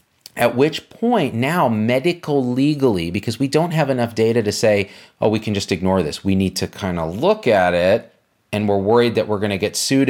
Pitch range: 100-135 Hz